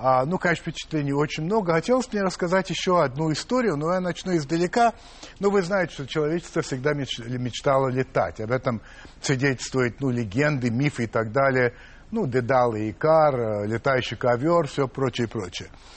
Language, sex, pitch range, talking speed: Russian, male, 125-175 Hz, 175 wpm